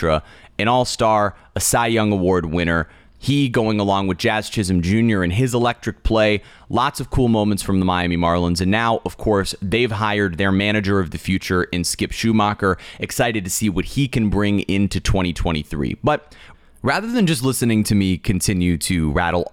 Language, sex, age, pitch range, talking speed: English, male, 30-49, 90-120 Hz, 185 wpm